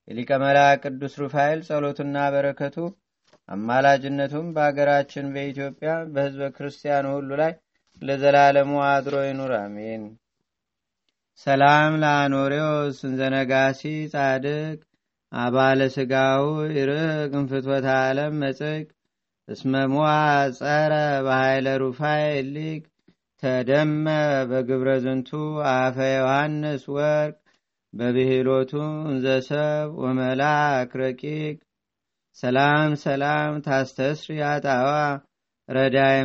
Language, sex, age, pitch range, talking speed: Amharic, male, 30-49, 130-150 Hz, 80 wpm